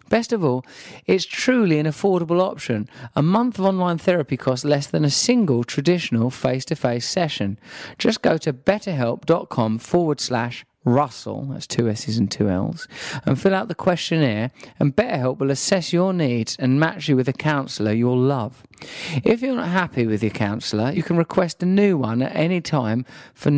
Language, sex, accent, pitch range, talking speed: English, male, British, 120-170 Hz, 180 wpm